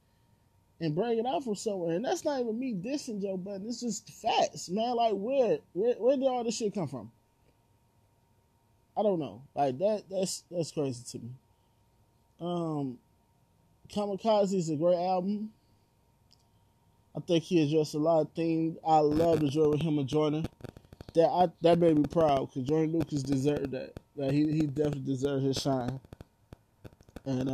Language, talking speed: English, 170 wpm